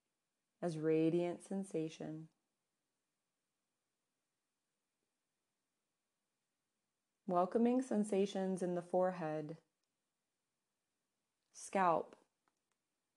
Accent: American